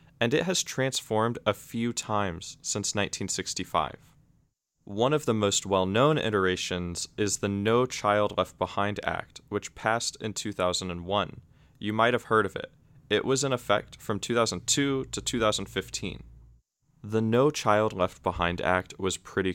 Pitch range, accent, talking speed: 95-125 Hz, American, 145 wpm